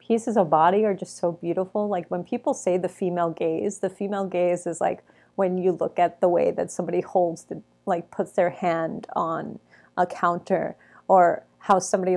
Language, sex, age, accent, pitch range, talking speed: English, female, 30-49, American, 170-205 Hz, 185 wpm